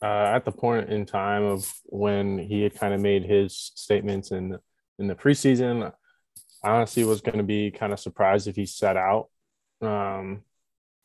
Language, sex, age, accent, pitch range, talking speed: English, male, 20-39, American, 95-110 Hz, 180 wpm